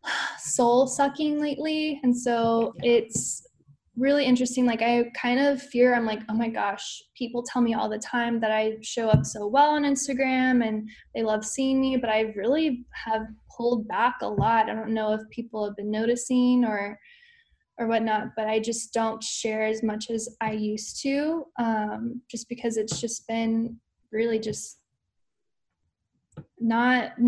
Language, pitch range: English, 220-250 Hz